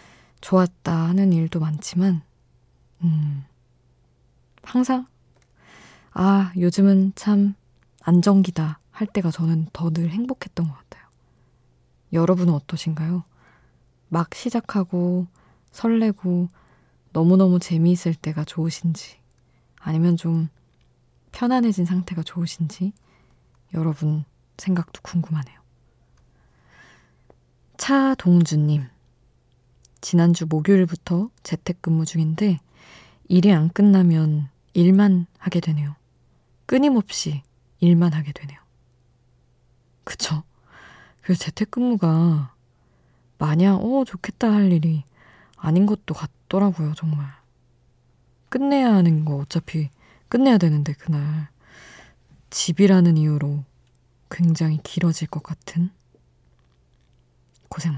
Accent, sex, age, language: native, female, 20-39, Korean